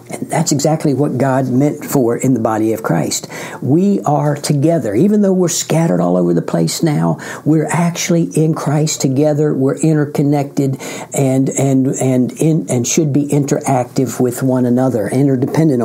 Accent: American